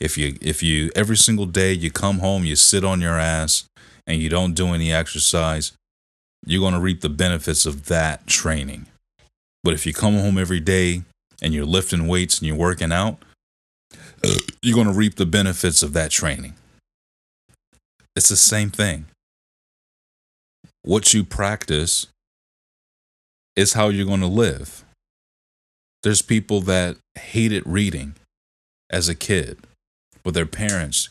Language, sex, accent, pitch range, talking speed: English, male, American, 75-100 Hz, 150 wpm